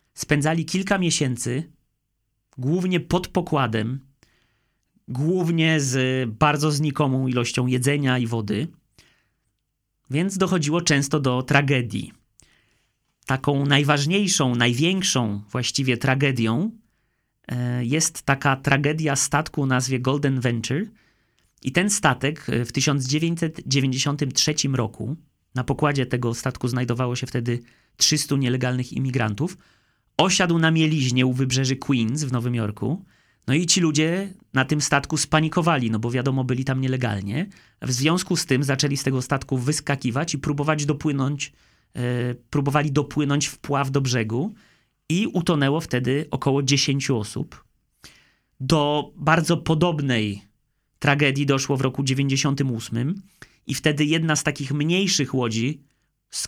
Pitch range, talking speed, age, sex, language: 125-155 Hz, 120 wpm, 30-49, male, Polish